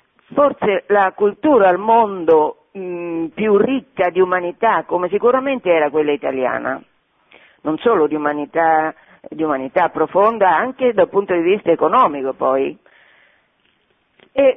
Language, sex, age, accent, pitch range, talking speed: Italian, female, 50-69, native, 155-205 Hz, 125 wpm